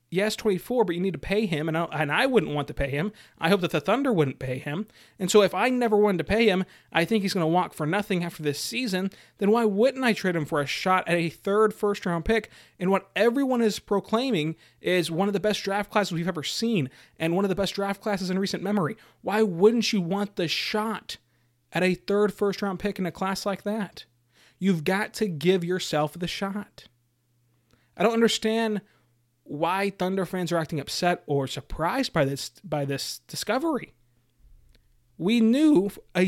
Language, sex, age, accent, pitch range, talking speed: English, male, 30-49, American, 150-205 Hz, 210 wpm